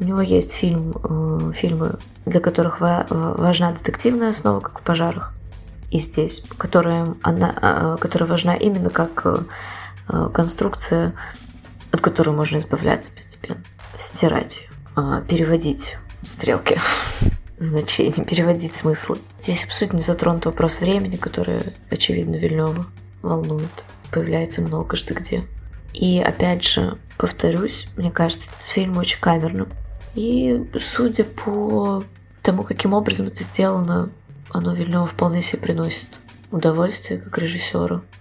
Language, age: Russian, 20-39